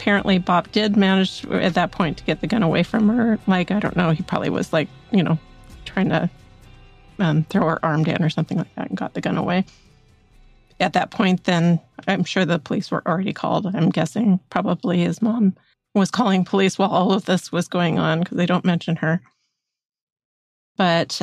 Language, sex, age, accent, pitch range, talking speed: English, female, 40-59, American, 165-195 Hz, 205 wpm